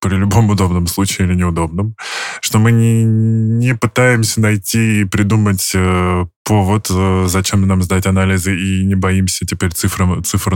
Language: Russian